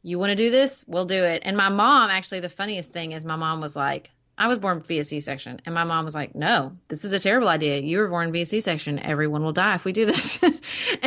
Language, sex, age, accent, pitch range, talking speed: English, female, 30-49, American, 160-185 Hz, 260 wpm